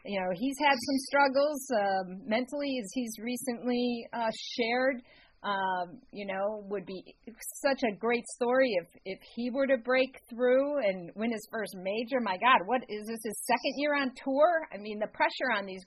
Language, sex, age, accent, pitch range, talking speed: English, female, 50-69, American, 195-260 Hz, 190 wpm